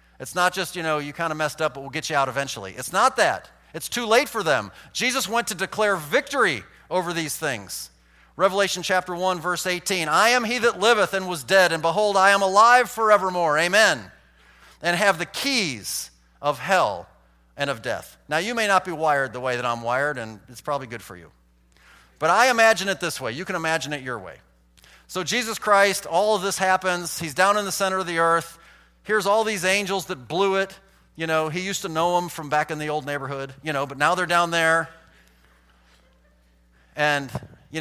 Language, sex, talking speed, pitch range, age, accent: English, male, 215 wpm, 120-190 Hz, 40-59, American